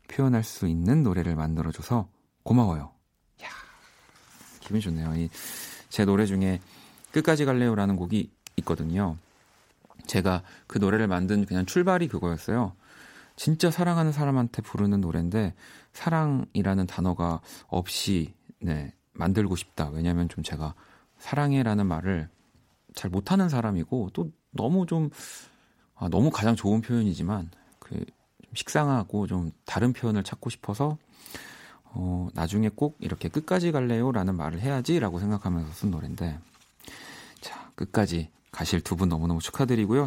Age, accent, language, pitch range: 40-59, native, Korean, 90-130 Hz